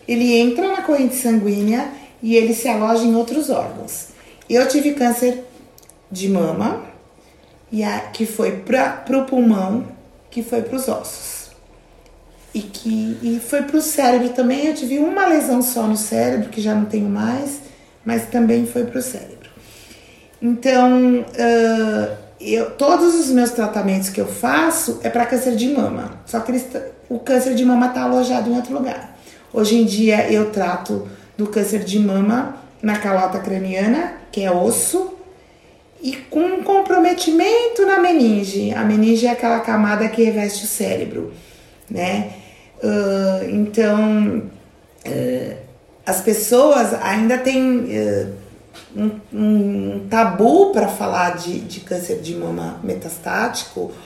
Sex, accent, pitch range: female, Brazilian, 210-255 Hz